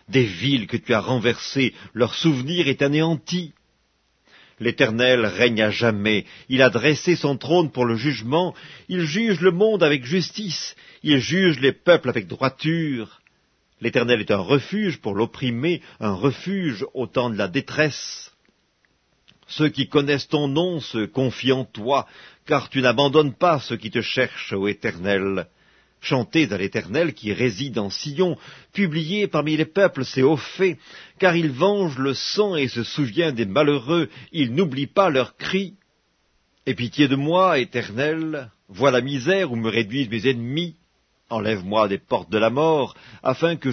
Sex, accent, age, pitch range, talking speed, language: male, French, 50-69, 120-165 Hz, 160 wpm, English